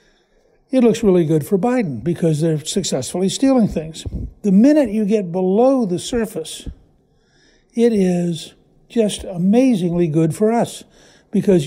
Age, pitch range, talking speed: 60-79, 165-205 Hz, 135 wpm